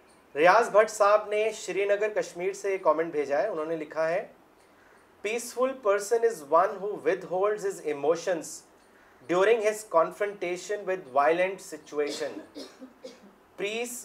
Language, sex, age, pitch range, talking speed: Urdu, male, 30-49, 165-210 Hz, 130 wpm